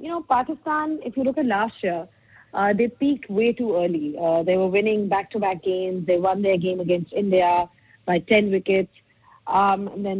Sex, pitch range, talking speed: female, 180-225 Hz, 195 wpm